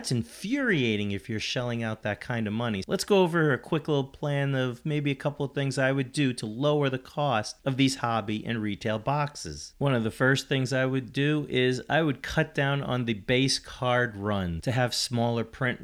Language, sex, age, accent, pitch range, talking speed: English, male, 30-49, American, 115-140 Hz, 215 wpm